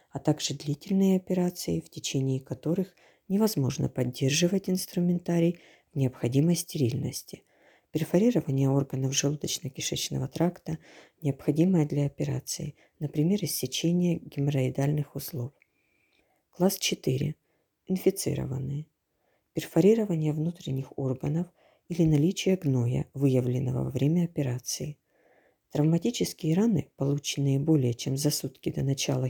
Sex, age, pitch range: female, 40-59, 135-170 Hz